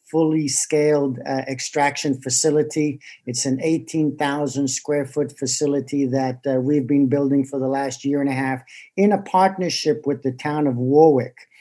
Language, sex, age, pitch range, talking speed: English, male, 50-69, 135-150 Hz, 160 wpm